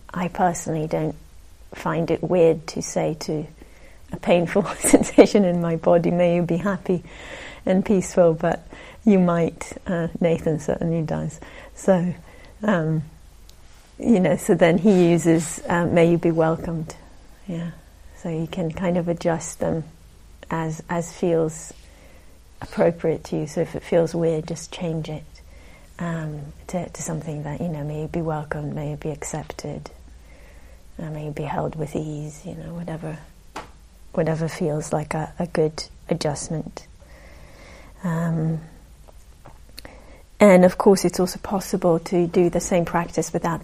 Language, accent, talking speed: English, British, 150 wpm